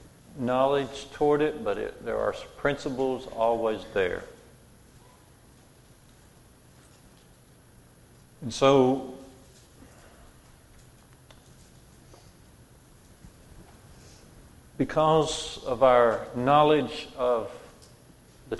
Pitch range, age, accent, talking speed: 110-135 Hz, 50-69, American, 60 wpm